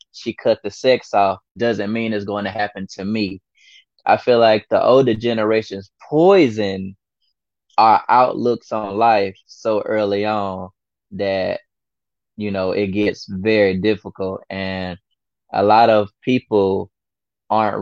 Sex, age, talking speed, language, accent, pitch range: male, 20-39, 135 wpm, English, American, 95-110 Hz